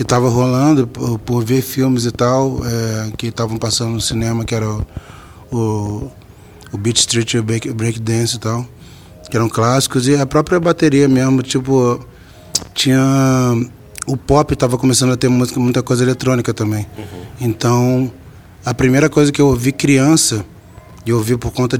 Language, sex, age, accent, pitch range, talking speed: Portuguese, male, 20-39, Brazilian, 110-130 Hz, 160 wpm